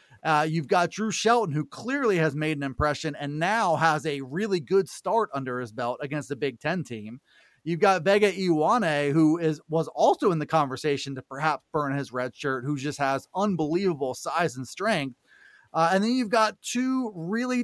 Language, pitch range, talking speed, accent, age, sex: English, 155-210 Hz, 195 wpm, American, 30-49, male